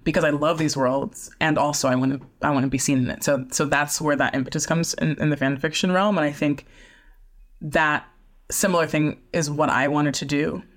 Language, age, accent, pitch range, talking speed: English, 20-39, American, 135-175 Hz, 235 wpm